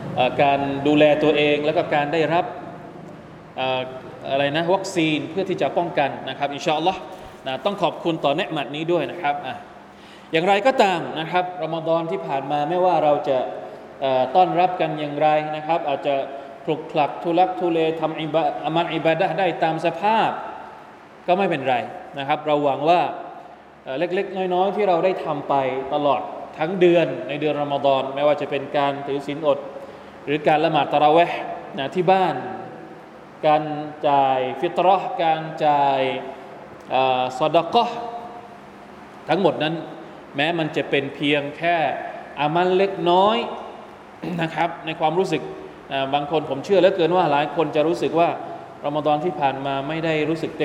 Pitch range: 145-180 Hz